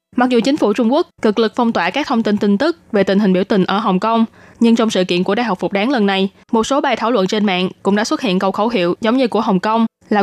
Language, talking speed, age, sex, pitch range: Vietnamese, 315 wpm, 20-39, female, 195-240 Hz